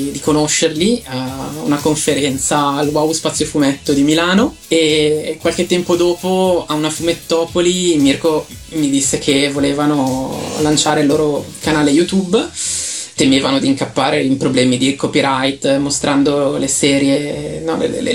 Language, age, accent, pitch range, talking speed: Italian, 20-39, native, 140-160 Hz, 130 wpm